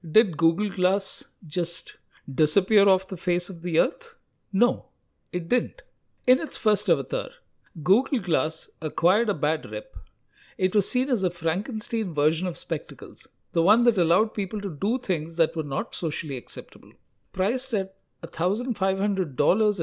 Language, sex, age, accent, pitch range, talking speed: English, male, 50-69, Indian, 155-210 Hz, 150 wpm